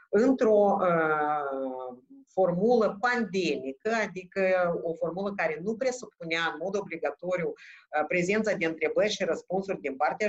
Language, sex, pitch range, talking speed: Romanian, female, 170-230 Hz, 120 wpm